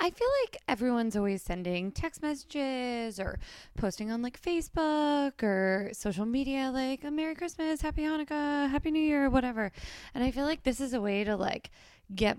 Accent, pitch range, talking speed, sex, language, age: American, 185-270 Hz, 180 wpm, female, English, 20-39